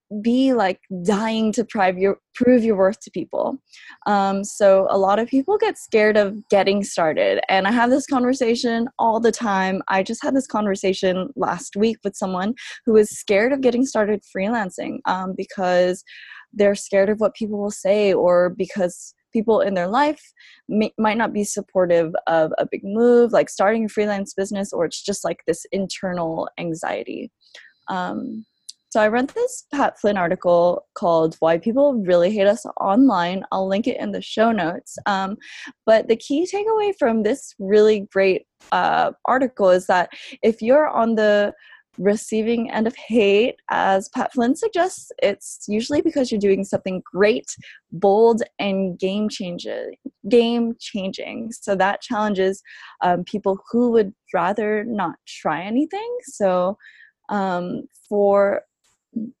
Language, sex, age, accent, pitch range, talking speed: English, female, 20-39, American, 195-245 Hz, 155 wpm